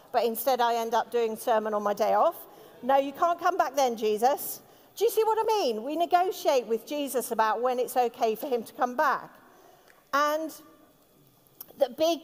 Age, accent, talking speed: 40-59, British, 195 wpm